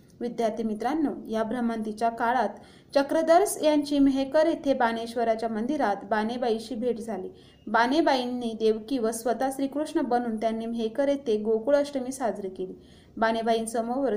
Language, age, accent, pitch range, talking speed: Marathi, 20-39, native, 220-265 Hz, 115 wpm